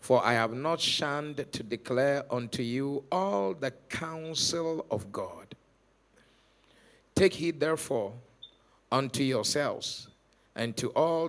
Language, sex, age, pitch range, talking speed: English, male, 50-69, 120-160 Hz, 115 wpm